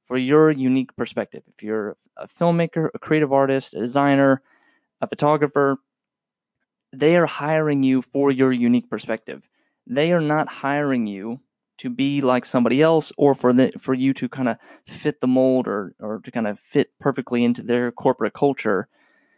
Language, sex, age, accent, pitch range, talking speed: English, male, 20-39, American, 125-160 Hz, 170 wpm